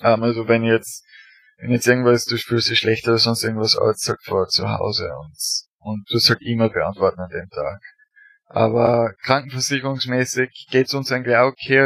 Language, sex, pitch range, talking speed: German, male, 115-130 Hz, 190 wpm